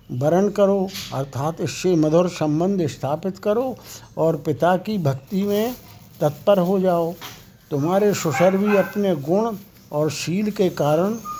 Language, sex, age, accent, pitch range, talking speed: Hindi, male, 60-79, native, 150-195 Hz, 130 wpm